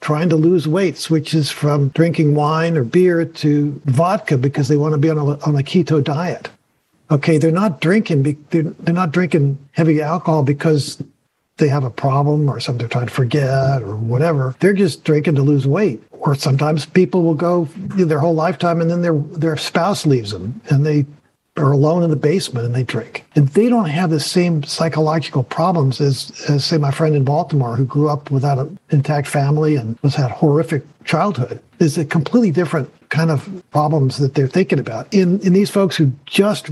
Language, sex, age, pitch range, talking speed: English, male, 50-69, 140-170 Hz, 195 wpm